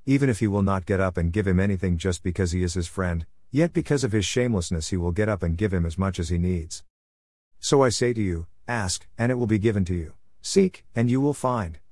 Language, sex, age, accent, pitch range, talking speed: English, male, 50-69, American, 90-125 Hz, 260 wpm